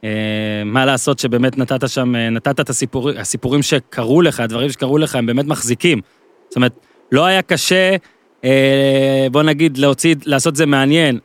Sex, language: male, Hebrew